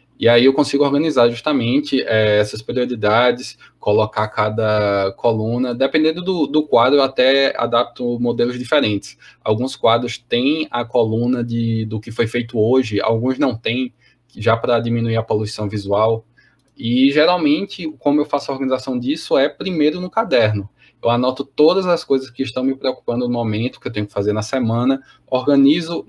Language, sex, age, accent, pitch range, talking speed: Portuguese, male, 10-29, Brazilian, 115-140 Hz, 160 wpm